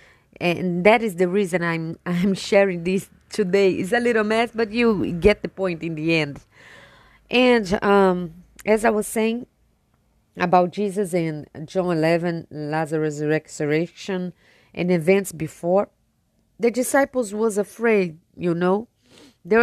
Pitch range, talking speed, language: 170-220 Hz, 140 wpm, Portuguese